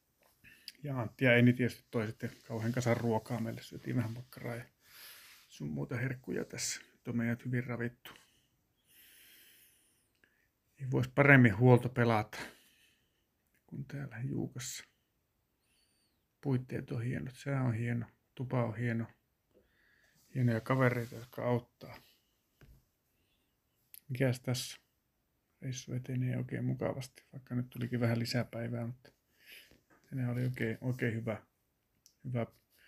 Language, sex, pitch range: Finnish, male, 115-125 Hz